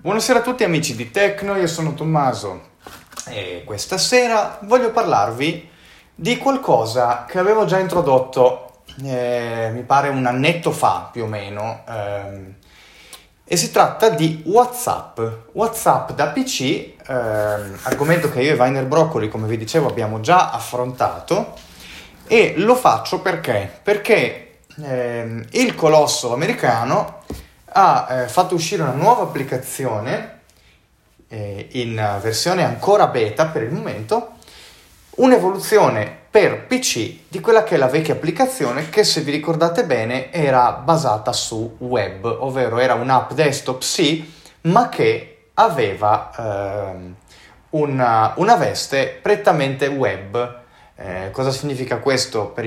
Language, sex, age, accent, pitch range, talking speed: Italian, male, 30-49, native, 115-180 Hz, 130 wpm